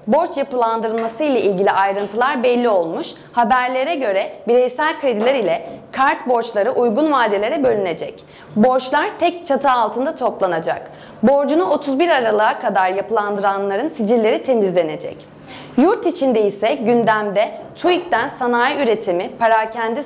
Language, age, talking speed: Turkish, 30-49, 110 wpm